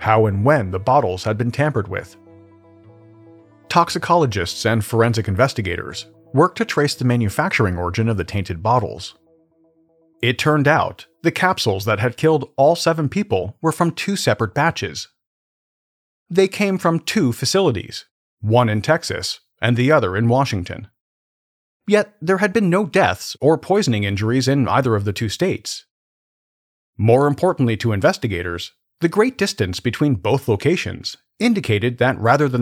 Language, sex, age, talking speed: English, male, 40-59, 150 wpm